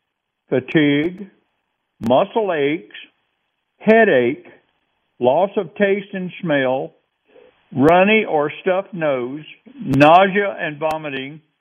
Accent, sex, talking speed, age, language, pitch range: American, male, 85 wpm, 60-79, English, 135-195 Hz